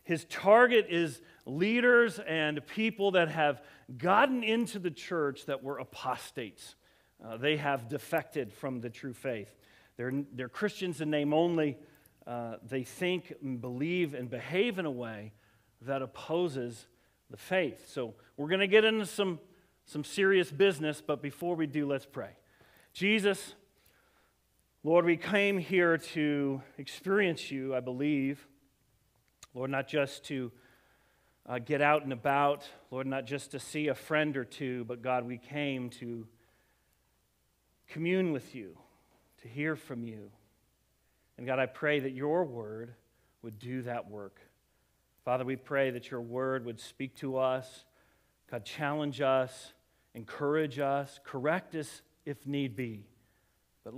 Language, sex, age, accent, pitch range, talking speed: English, male, 40-59, American, 125-155 Hz, 145 wpm